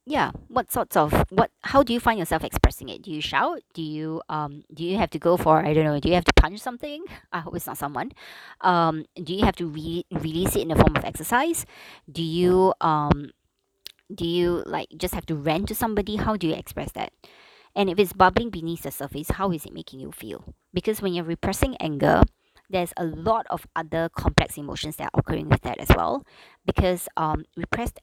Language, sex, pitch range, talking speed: English, male, 155-185 Hz, 220 wpm